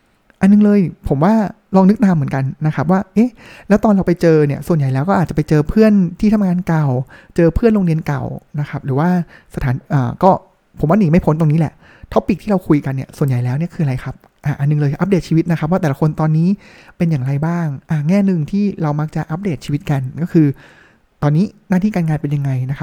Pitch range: 145-190 Hz